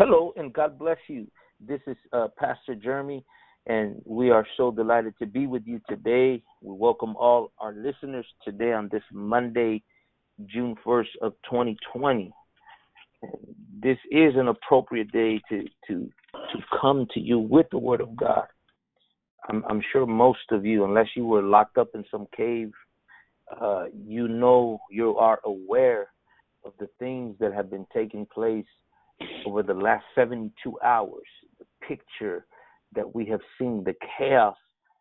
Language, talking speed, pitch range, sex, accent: English, 155 wpm, 110-135 Hz, male, American